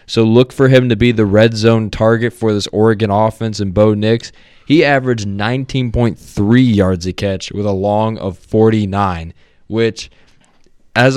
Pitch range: 100-120 Hz